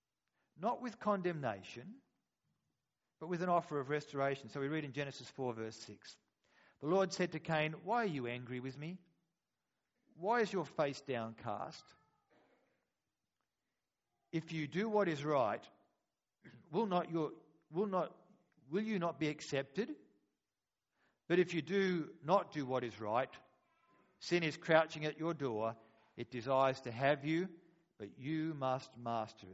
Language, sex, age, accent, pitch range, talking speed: English, male, 50-69, Australian, 130-175 Hz, 150 wpm